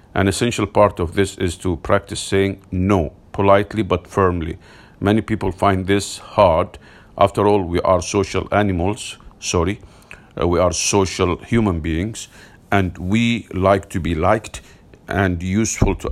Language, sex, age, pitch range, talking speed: English, male, 50-69, 90-105 Hz, 150 wpm